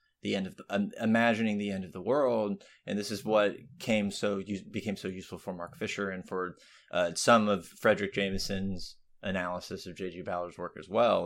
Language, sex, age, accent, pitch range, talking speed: English, male, 20-39, American, 95-110 Hz, 205 wpm